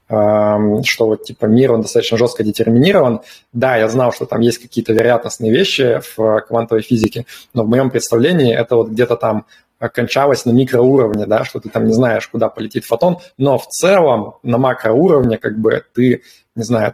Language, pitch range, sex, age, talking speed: Russian, 110-125 Hz, male, 20-39, 175 wpm